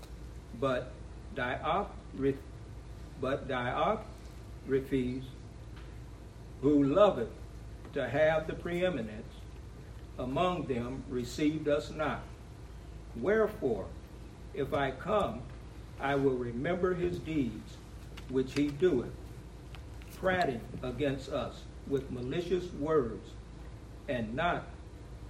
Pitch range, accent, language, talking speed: 120-160 Hz, American, English, 85 wpm